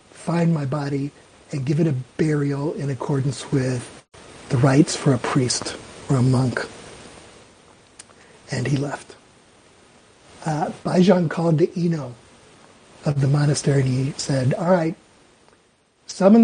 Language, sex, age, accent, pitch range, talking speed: English, male, 50-69, American, 140-165 Hz, 130 wpm